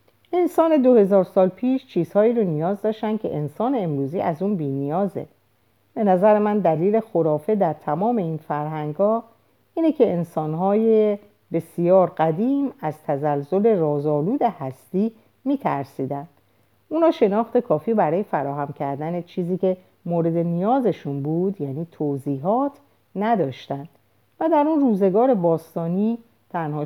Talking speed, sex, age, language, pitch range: 125 wpm, female, 50-69, Persian, 145-225 Hz